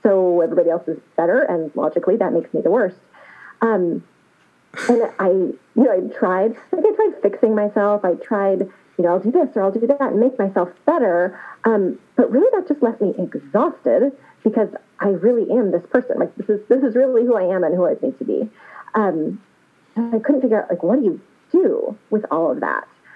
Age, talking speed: 30-49, 210 wpm